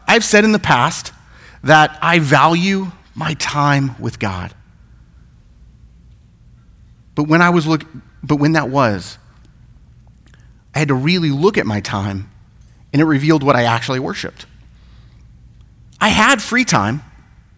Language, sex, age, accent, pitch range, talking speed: English, male, 30-49, American, 110-170 Hz, 135 wpm